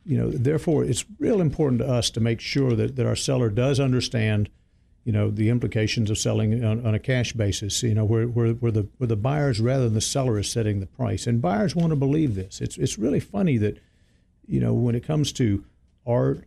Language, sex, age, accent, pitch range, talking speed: English, male, 60-79, American, 110-135 Hz, 225 wpm